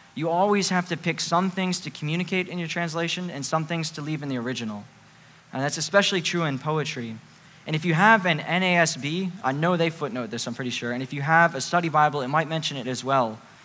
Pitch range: 135-170 Hz